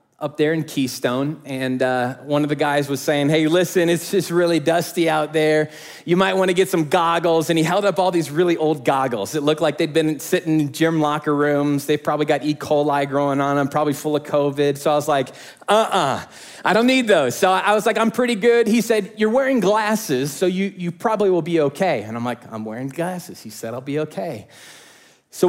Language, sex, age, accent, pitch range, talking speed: English, male, 30-49, American, 150-185 Hz, 230 wpm